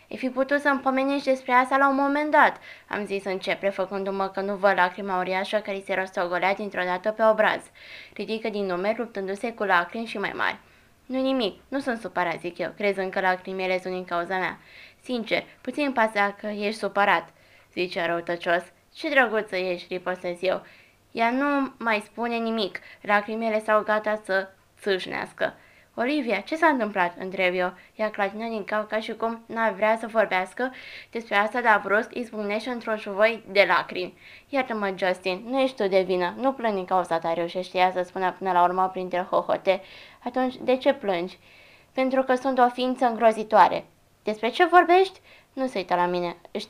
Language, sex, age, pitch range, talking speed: Romanian, female, 20-39, 185-235 Hz, 180 wpm